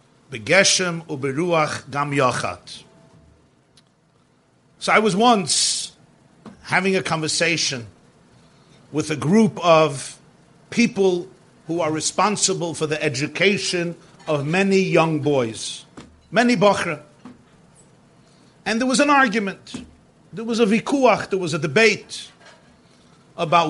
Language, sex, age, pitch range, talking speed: English, male, 50-69, 165-230 Hz, 95 wpm